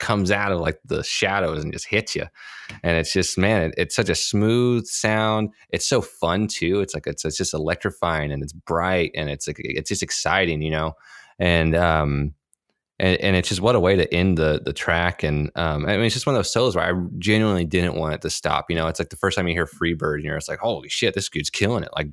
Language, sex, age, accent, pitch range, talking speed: English, male, 20-39, American, 80-100 Hz, 260 wpm